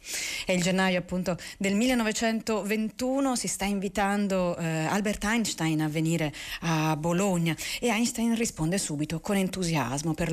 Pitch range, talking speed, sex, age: 160-200 Hz, 135 wpm, female, 40-59